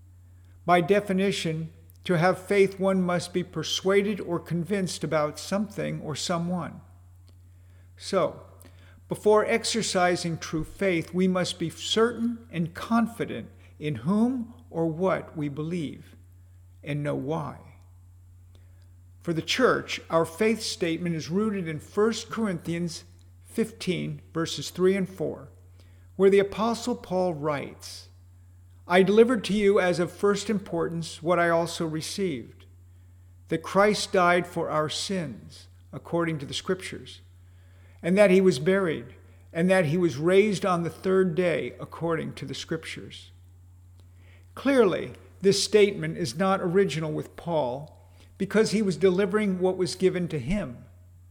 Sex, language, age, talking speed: male, English, 50-69, 130 wpm